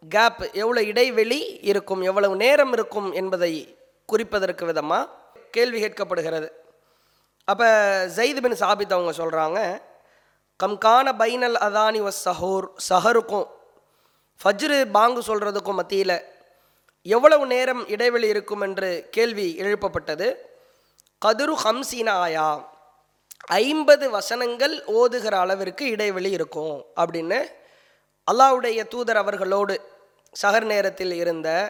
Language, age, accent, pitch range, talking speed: English, 20-39, Indian, 185-245 Hz, 115 wpm